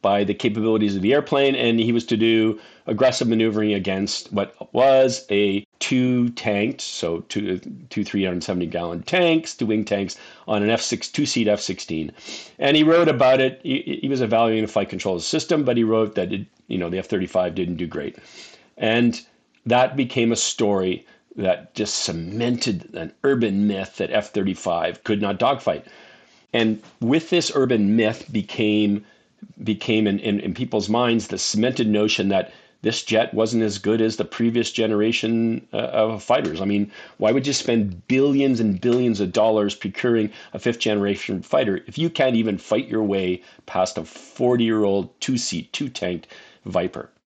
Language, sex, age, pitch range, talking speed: English, male, 40-59, 100-120 Hz, 170 wpm